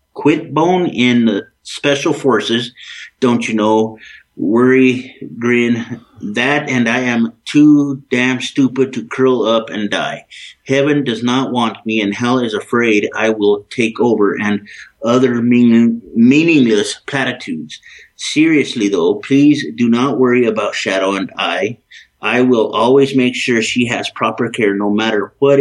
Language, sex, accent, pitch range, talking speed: English, male, American, 115-135 Hz, 150 wpm